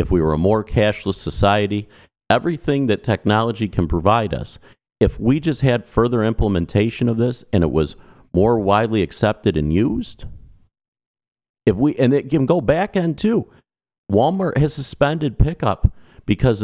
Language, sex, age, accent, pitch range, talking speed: English, male, 50-69, American, 85-115 Hz, 155 wpm